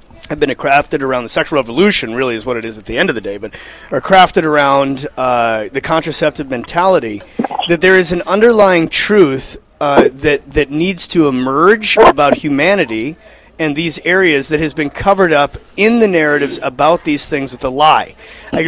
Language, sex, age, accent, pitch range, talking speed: English, male, 30-49, American, 145-180 Hz, 185 wpm